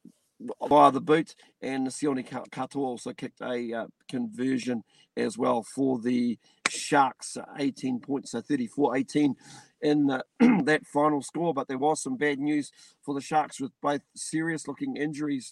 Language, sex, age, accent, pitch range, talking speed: English, male, 50-69, Australian, 135-160 Hz, 145 wpm